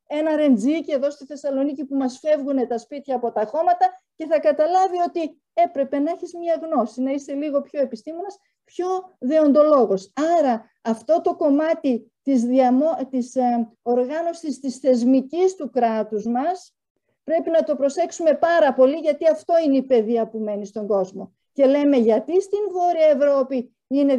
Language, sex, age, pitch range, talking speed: Greek, female, 40-59, 250-340 Hz, 160 wpm